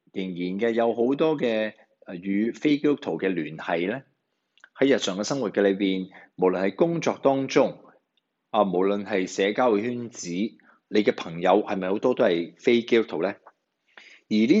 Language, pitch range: Chinese, 95-150 Hz